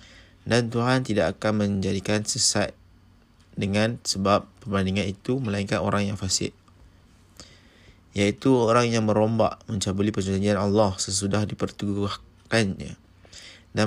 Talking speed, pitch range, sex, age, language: 105 wpm, 95-110 Hz, male, 20-39, Malay